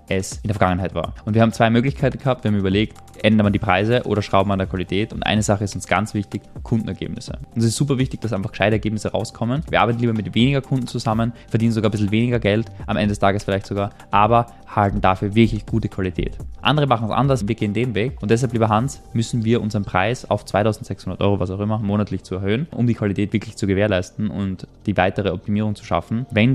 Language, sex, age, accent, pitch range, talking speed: German, male, 20-39, German, 100-125 Hz, 235 wpm